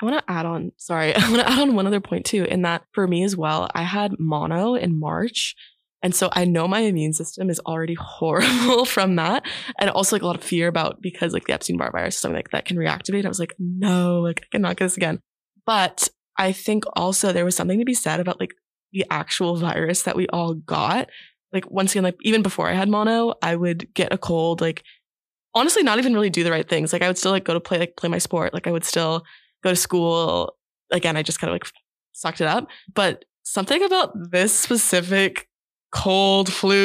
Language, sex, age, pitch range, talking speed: English, female, 20-39, 170-200 Hz, 235 wpm